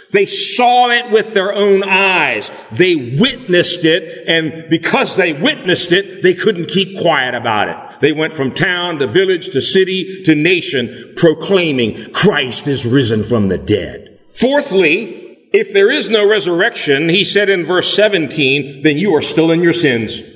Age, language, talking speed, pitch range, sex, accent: 50-69, English, 165 wpm, 165-220 Hz, male, American